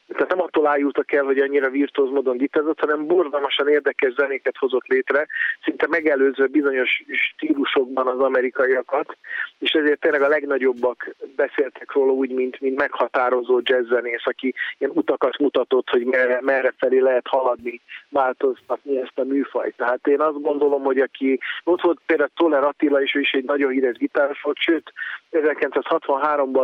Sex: male